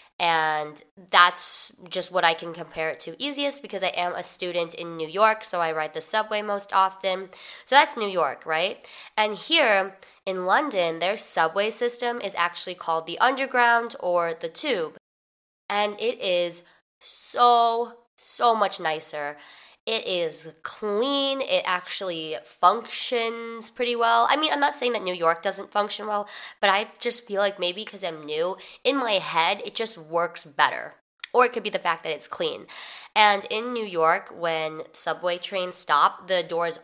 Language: English